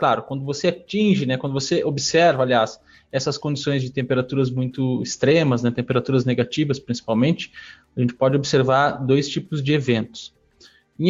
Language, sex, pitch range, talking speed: Portuguese, male, 135-170 Hz, 150 wpm